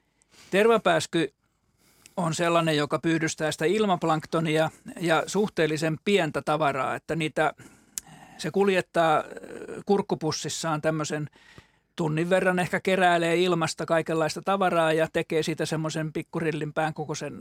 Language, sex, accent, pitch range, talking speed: Finnish, male, native, 155-180 Hz, 105 wpm